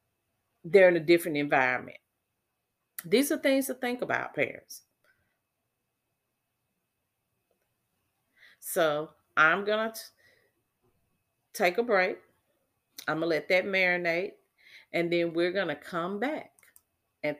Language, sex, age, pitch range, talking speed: English, female, 40-59, 150-220 Hz, 105 wpm